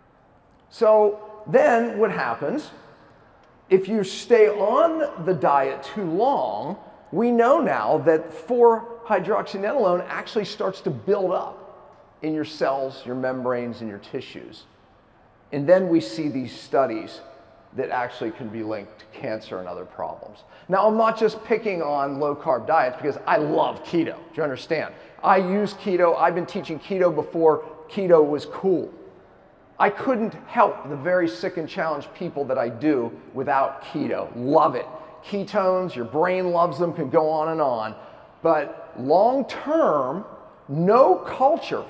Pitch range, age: 155-220 Hz, 40-59